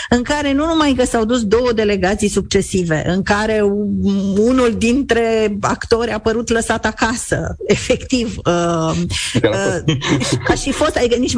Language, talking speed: Romanian, 130 wpm